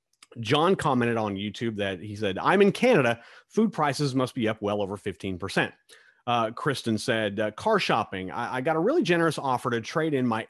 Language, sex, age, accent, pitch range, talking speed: English, male, 30-49, American, 100-150 Hz, 200 wpm